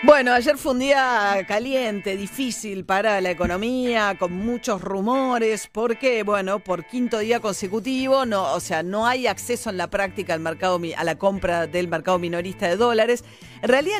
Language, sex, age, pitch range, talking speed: Italian, female, 40-59, 180-230 Hz, 170 wpm